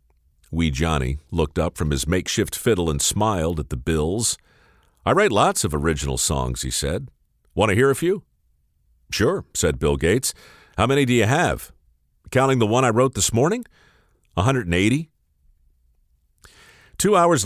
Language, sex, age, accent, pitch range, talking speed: English, male, 50-69, American, 75-125 Hz, 155 wpm